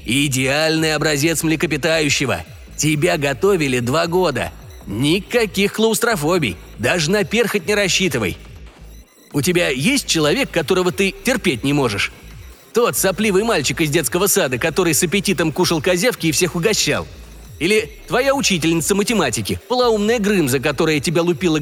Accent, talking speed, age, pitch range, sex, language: native, 130 wpm, 30-49, 155-220 Hz, male, Russian